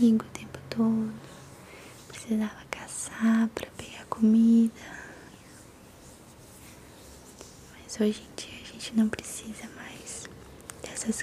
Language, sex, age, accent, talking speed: Portuguese, female, 20-39, Brazilian, 95 wpm